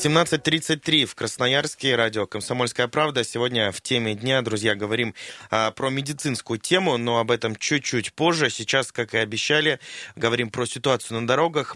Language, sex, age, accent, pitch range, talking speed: Russian, male, 20-39, native, 110-130 Hz, 145 wpm